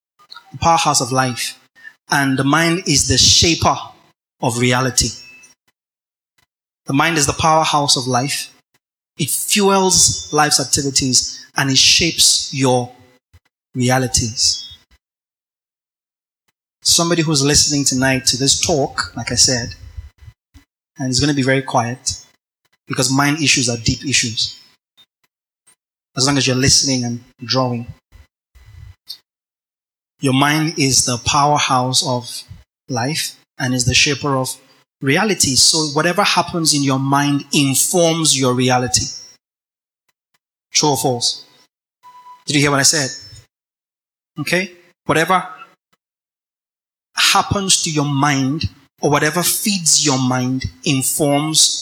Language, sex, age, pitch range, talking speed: English, male, 20-39, 125-150 Hz, 115 wpm